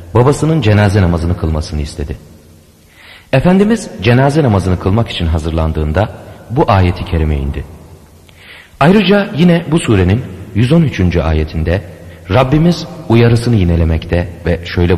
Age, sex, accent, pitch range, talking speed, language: 40-59, male, native, 85-120 Hz, 105 wpm, Turkish